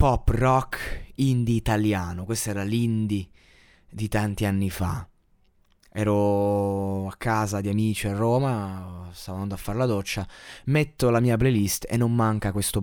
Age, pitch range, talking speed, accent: 20-39, 105-135 Hz, 150 wpm, native